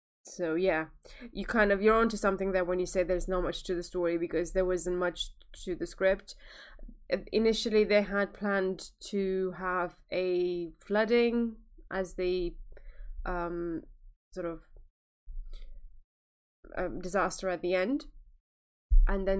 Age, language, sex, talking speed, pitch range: 20-39, English, female, 140 wpm, 160-190 Hz